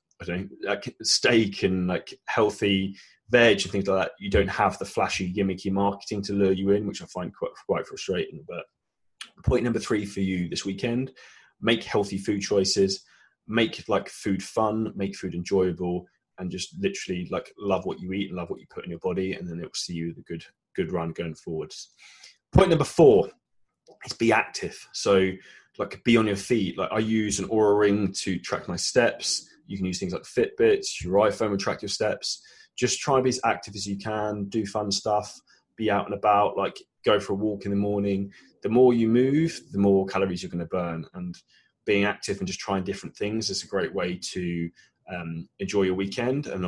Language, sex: English, male